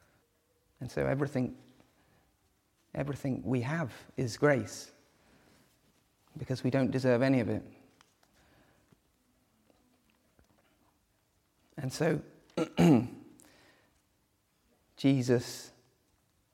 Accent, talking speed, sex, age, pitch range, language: British, 65 wpm, male, 30-49, 115-130 Hz, English